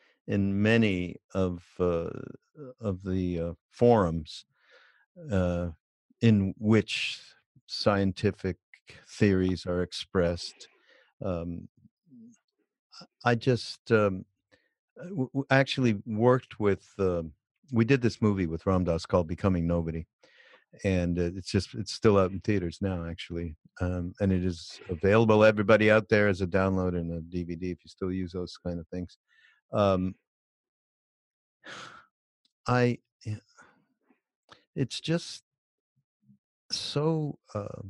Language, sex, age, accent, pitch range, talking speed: English, male, 50-69, American, 90-110 Hz, 115 wpm